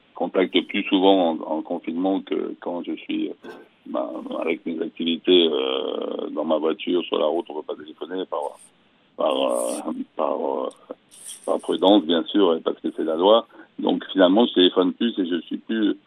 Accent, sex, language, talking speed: French, male, French, 185 wpm